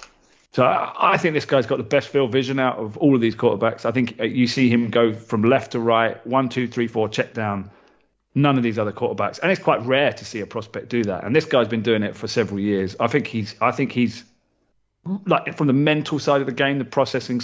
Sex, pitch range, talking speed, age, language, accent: male, 110-135 Hz, 250 wpm, 30-49, English, British